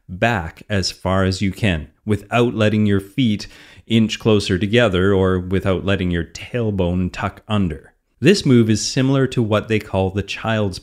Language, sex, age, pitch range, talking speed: English, male, 30-49, 95-115 Hz, 165 wpm